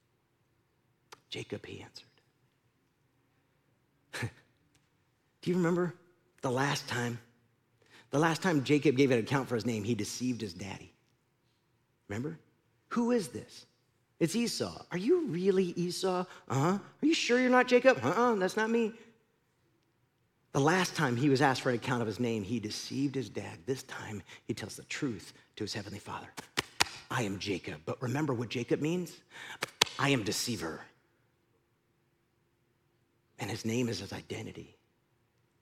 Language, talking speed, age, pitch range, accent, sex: English, 150 wpm, 40-59, 115-145 Hz, American, male